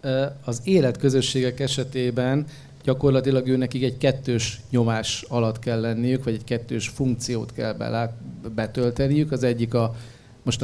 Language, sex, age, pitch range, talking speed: Hungarian, male, 40-59, 120-140 Hz, 130 wpm